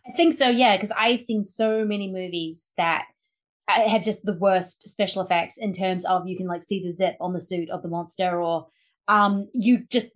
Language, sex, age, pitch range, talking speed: English, female, 30-49, 185-220 Hz, 215 wpm